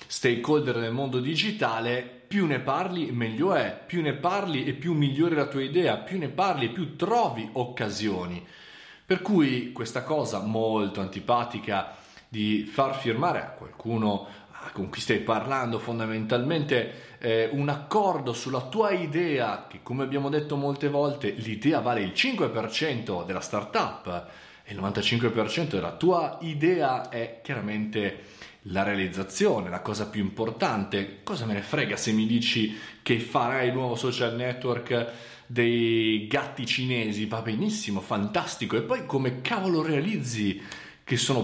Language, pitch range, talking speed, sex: Italian, 110-145 Hz, 140 wpm, male